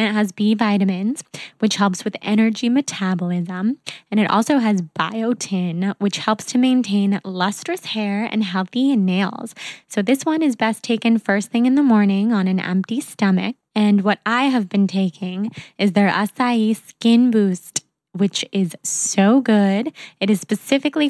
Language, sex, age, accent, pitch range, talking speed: English, female, 10-29, American, 195-245 Hz, 160 wpm